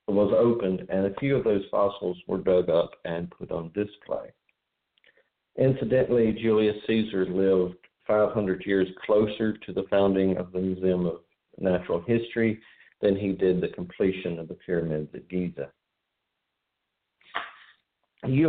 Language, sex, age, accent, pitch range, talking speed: English, male, 50-69, American, 85-105 Hz, 135 wpm